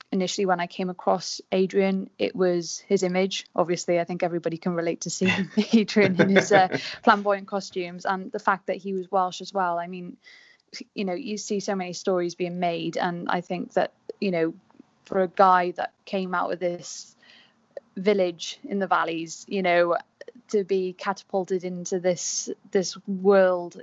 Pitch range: 180-200 Hz